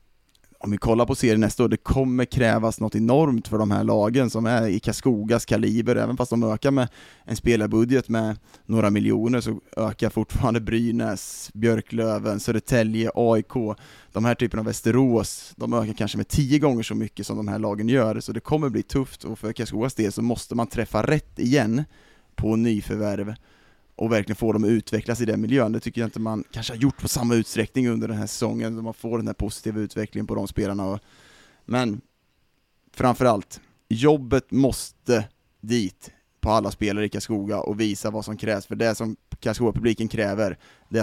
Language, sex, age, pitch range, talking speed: Swedish, male, 20-39, 105-120 Hz, 185 wpm